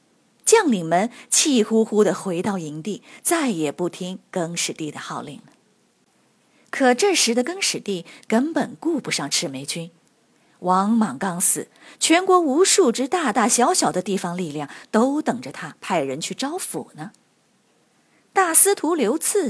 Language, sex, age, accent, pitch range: Chinese, female, 30-49, native, 175-265 Hz